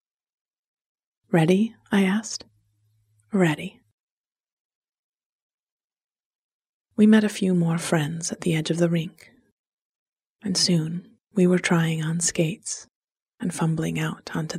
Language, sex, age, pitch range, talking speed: English, female, 30-49, 160-195 Hz, 110 wpm